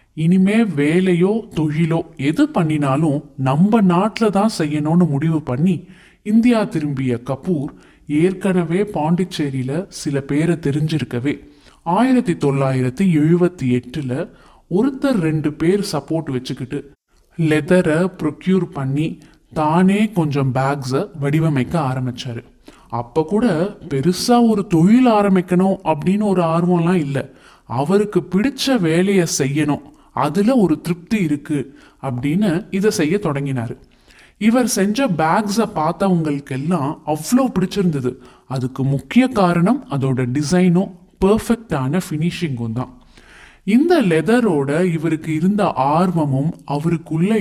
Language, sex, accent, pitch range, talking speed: Tamil, male, native, 140-190 Hz, 100 wpm